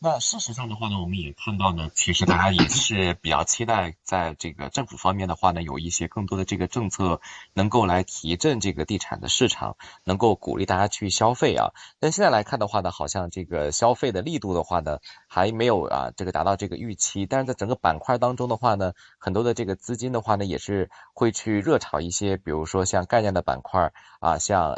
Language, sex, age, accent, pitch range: Chinese, male, 20-39, native, 90-110 Hz